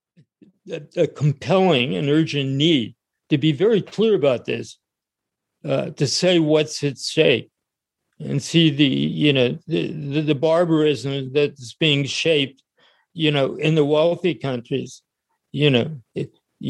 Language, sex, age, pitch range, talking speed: English, male, 50-69, 135-155 Hz, 135 wpm